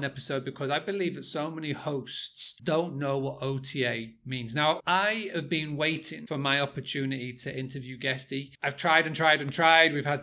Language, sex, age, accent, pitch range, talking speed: English, male, 30-49, British, 130-160 Hz, 190 wpm